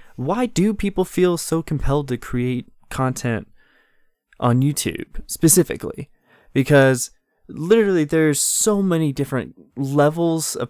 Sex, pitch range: male, 125-170 Hz